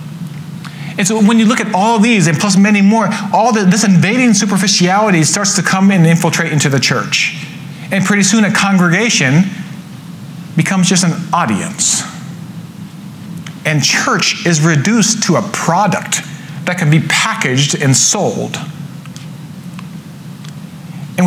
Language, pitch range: English, 155-195 Hz